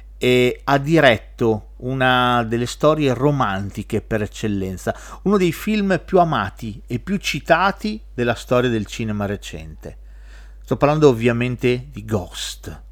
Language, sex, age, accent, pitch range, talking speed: Italian, male, 40-59, native, 100-145 Hz, 125 wpm